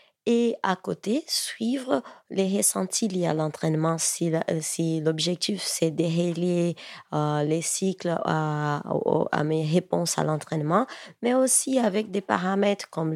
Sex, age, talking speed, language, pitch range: female, 30-49, 140 wpm, French, 170-225 Hz